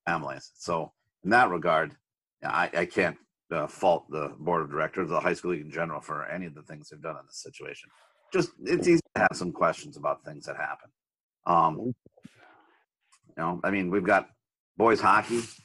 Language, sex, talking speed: English, male, 190 wpm